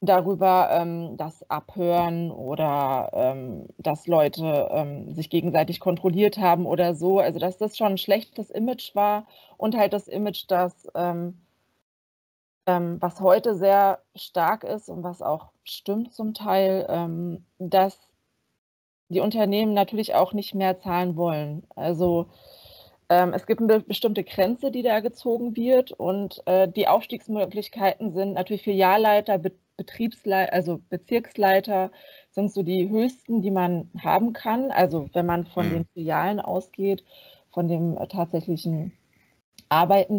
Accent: German